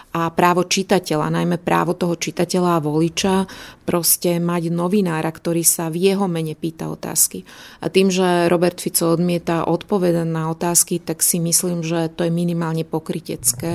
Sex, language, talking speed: female, Slovak, 155 wpm